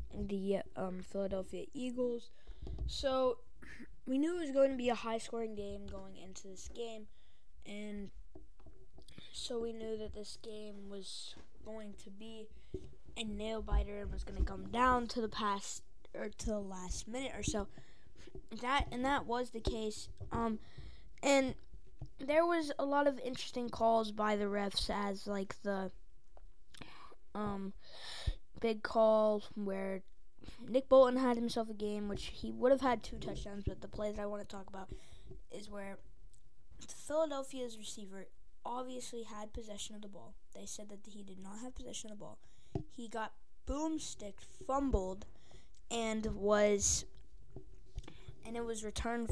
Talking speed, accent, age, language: 155 wpm, American, 10-29, English